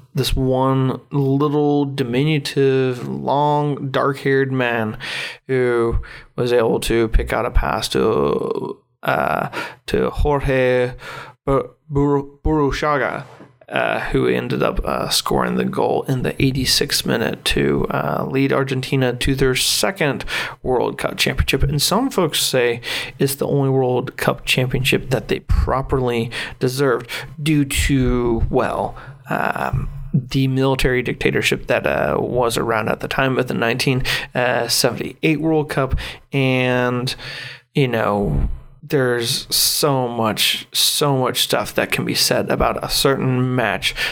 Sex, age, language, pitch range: male, 30-49, English, 125-140 Hz